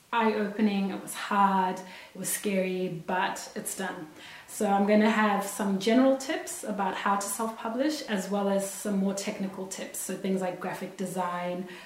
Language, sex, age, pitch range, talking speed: English, female, 20-39, 190-255 Hz, 170 wpm